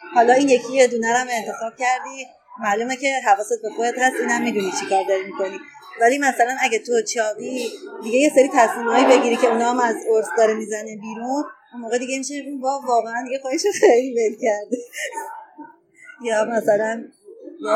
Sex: female